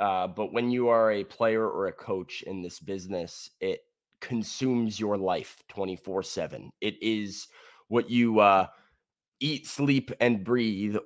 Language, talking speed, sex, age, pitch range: English, 150 wpm, male, 20-39, 100-120 Hz